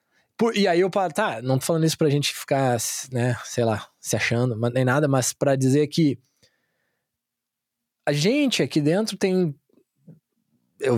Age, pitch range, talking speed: 20-39, 125-200 Hz, 170 wpm